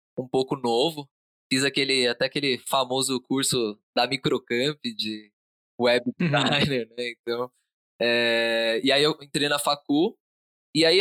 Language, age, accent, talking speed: Portuguese, 20-39, Brazilian, 135 wpm